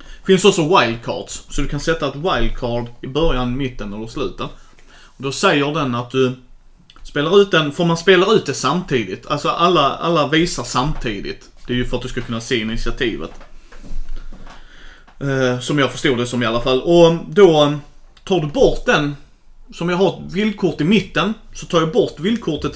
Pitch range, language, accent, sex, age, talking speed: 120-165 Hz, Swedish, native, male, 30-49, 185 wpm